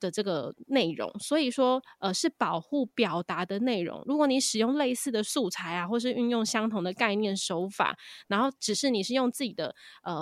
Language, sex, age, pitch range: Chinese, female, 20-39, 195-255 Hz